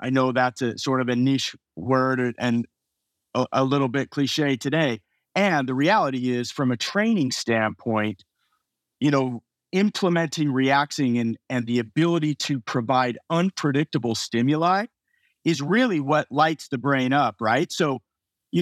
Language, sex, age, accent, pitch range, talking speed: English, male, 50-69, American, 125-155 Hz, 150 wpm